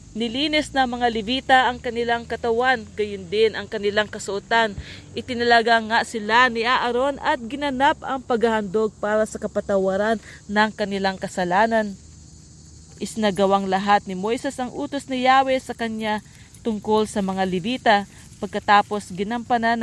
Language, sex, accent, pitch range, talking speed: English, female, Filipino, 195-240 Hz, 130 wpm